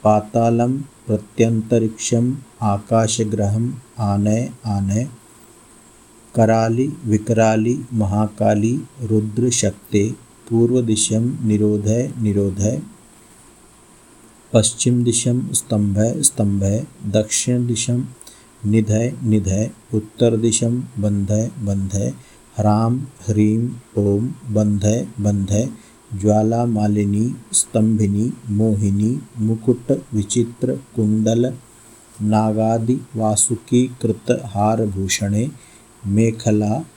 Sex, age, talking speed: male, 50-69, 70 wpm